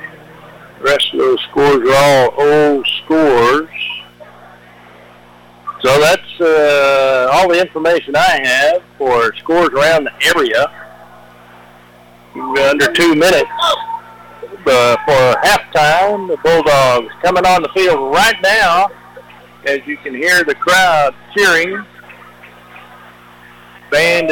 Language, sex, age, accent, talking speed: English, male, 60-79, American, 110 wpm